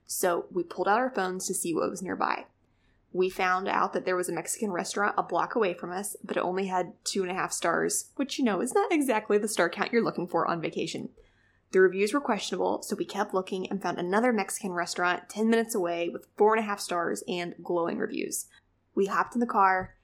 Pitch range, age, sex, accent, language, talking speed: 180-215 Hz, 20-39, female, American, English, 235 wpm